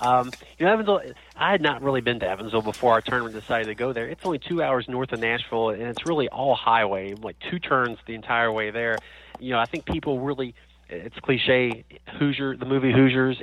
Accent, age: American, 30-49